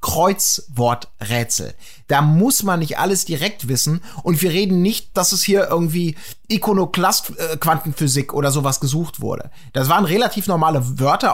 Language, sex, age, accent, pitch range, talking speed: German, male, 30-49, German, 160-230 Hz, 140 wpm